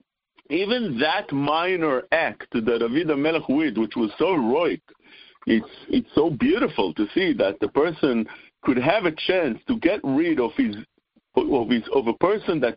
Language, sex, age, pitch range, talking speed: English, male, 50-69, 170-275 Hz, 165 wpm